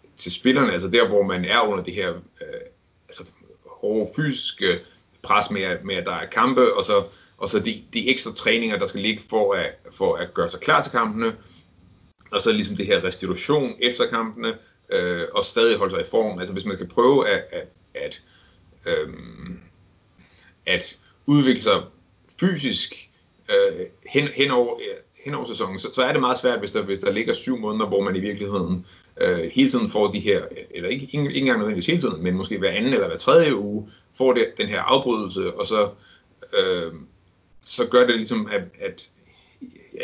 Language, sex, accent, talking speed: Danish, male, native, 175 wpm